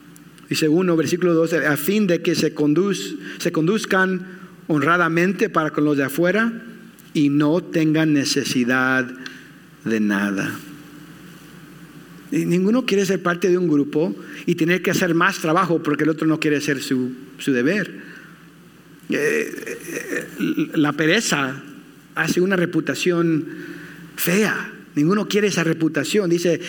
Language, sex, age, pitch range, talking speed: English, male, 50-69, 150-180 Hz, 125 wpm